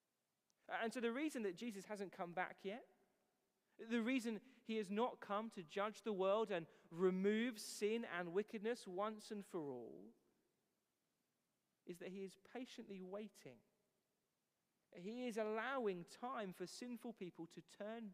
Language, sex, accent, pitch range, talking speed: English, male, British, 180-225 Hz, 145 wpm